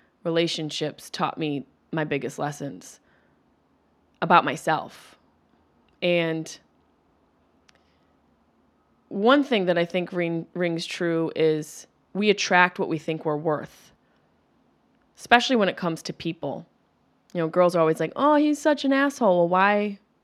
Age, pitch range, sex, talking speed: 20-39, 160-230 Hz, female, 125 wpm